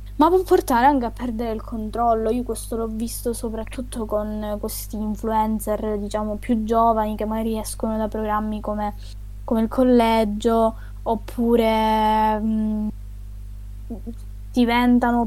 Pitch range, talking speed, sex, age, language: 215-245 Hz, 120 wpm, female, 10-29, Italian